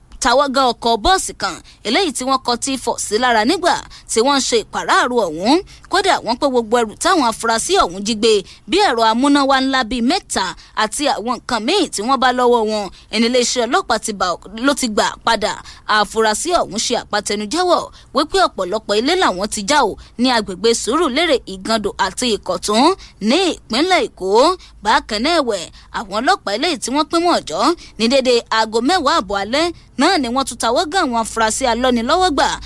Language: English